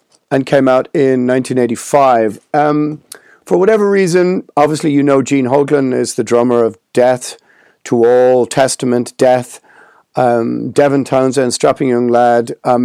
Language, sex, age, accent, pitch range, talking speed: English, male, 40-59, British, 120-145 Hz, 140 wpm